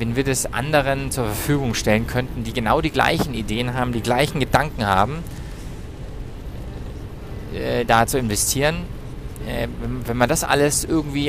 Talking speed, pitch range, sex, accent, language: 150 wpm, 110-135 Hz, male, German, English